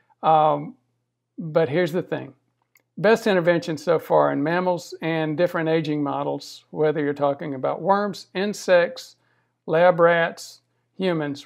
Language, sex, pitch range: English, male, 140-175 Hz